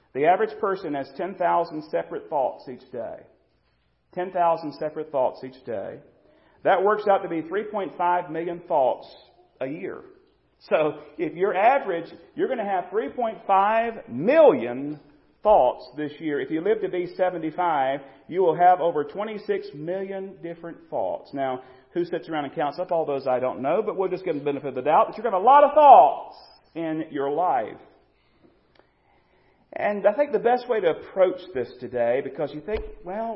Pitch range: 150-215 Hz